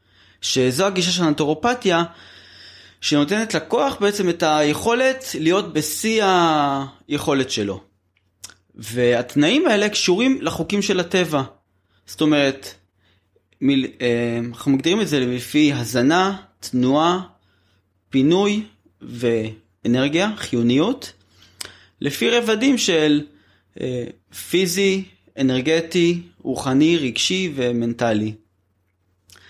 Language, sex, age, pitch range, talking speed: Hebrew, male, 20-39, 105-170 Hz, 85 wpm